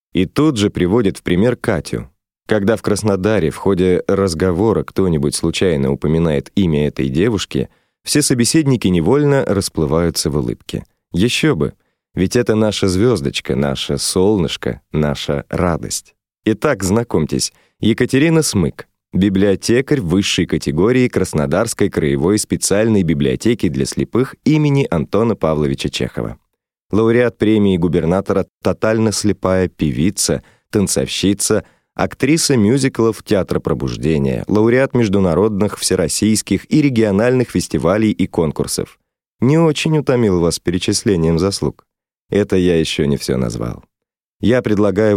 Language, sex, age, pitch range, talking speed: Russian, male, 20-39, 85-115 Hz, 115 wpm